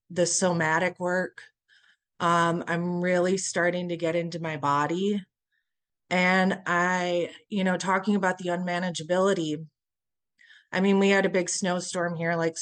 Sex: female